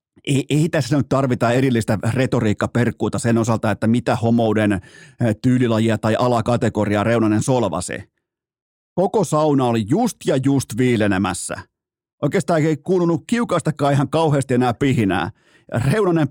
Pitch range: 115-145 Hz